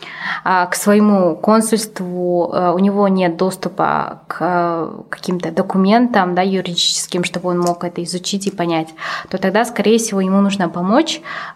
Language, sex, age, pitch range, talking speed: Russian, female, 20-39, 175-205 Hz, 135 wpm